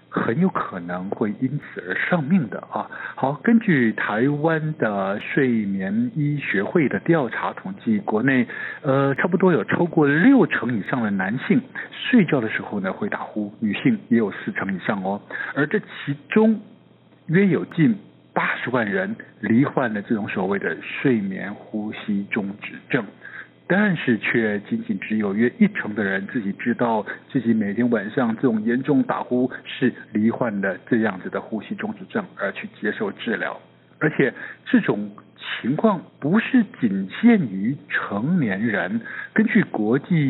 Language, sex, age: Chinese, male, 60-79